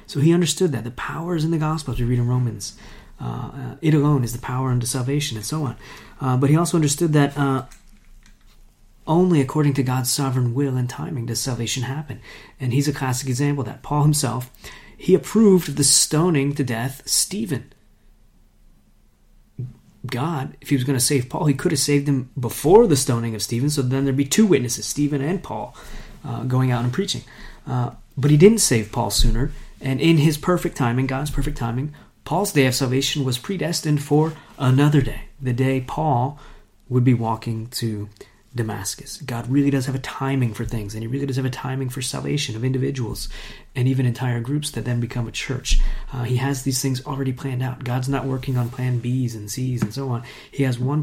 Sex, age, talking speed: male, 30-49, 205 wpm